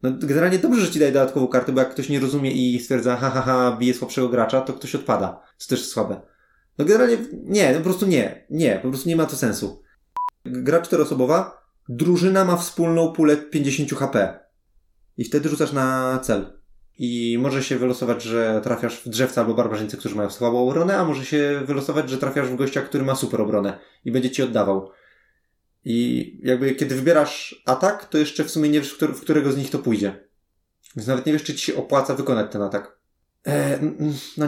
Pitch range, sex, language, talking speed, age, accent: 120-155 Hz, male, Polish, 195 wpm, 20-39, native